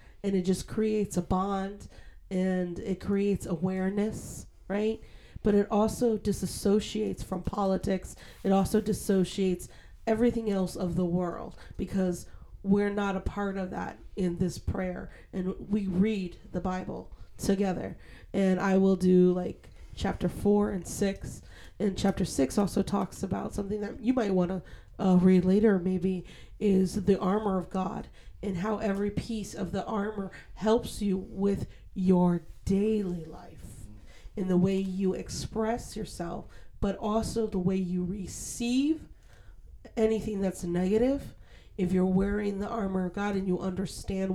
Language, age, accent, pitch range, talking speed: English, 30-49, American, 185-205 Hz, 145 wpm